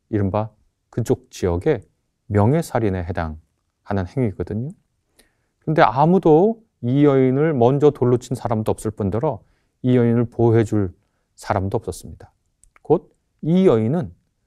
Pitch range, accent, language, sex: 100-140 Hz, native, Korean, male